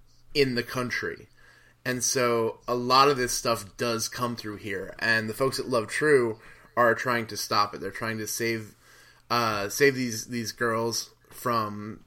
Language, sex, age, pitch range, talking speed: English, male, 20-39, 110-125 Hz, 175 wpm